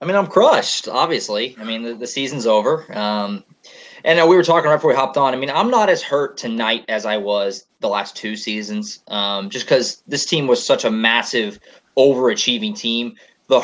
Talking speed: 205 wpm